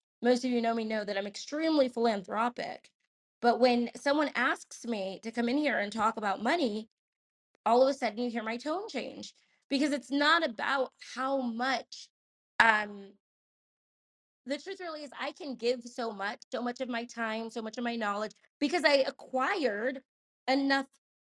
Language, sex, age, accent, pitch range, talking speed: English, female, 20-39, American, 230-285 Hz, 175 wpm